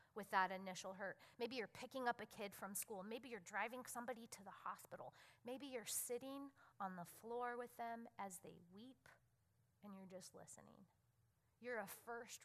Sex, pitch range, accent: female, 185-255 Hz, American